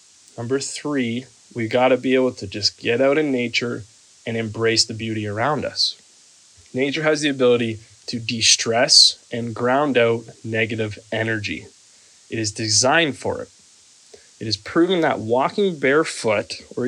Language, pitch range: English, 110-130 Hz